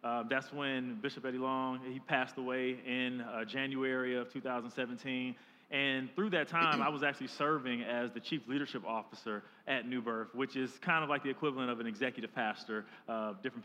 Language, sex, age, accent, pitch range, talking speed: English, male, 30-49, American, 130-165 Hz, 190 wpm